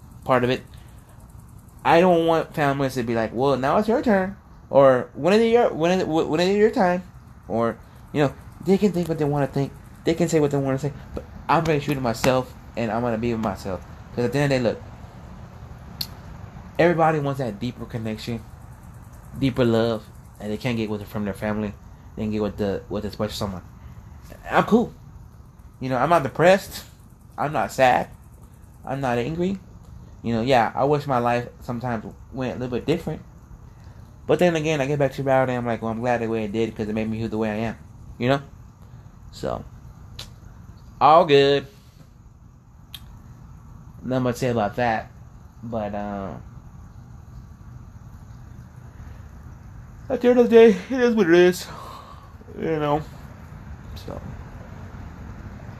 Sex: male